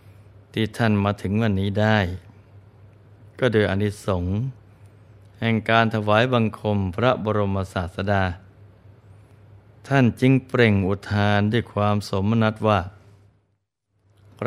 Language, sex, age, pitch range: Thai, male, 20-39, 100-110 Hz